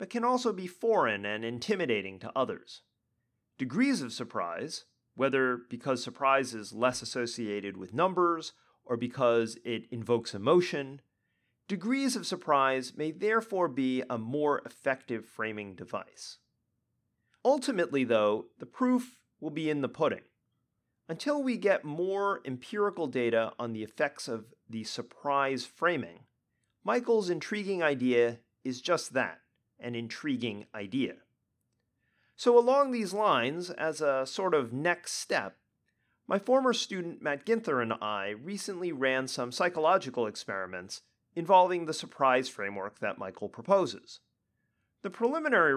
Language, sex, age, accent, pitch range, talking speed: English, male, 30-49, American, 120-190 Hz, 130 wpm